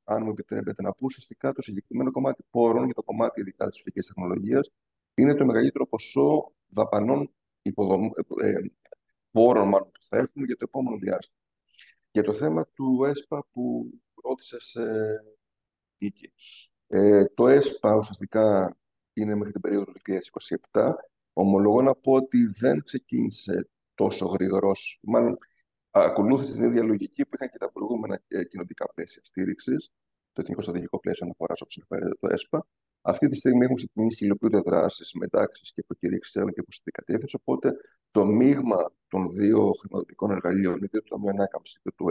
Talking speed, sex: 155 wpm, male